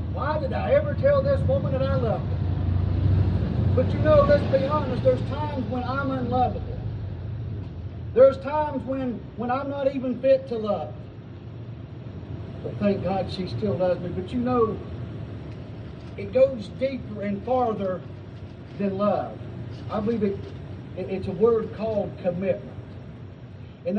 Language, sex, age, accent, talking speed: English, male, 40-59, American, 150 wpm